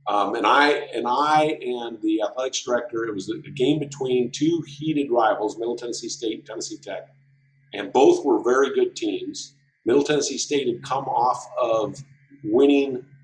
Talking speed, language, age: 170 wpm, English, 50-69